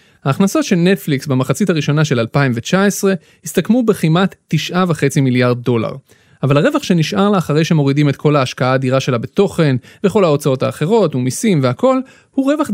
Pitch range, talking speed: 135-190 Hz, 145 wpm